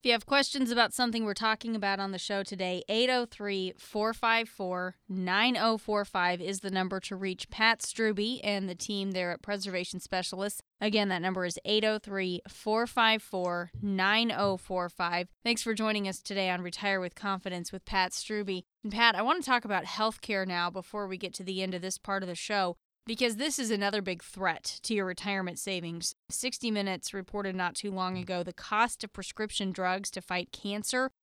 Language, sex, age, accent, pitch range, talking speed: English, female, 20-39, American, 185-215 Hz, 185 wpm